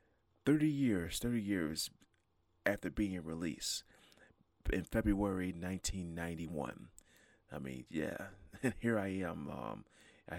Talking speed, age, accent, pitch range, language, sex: 85 wpm, 30-49, American, 80-100 Hz, English, male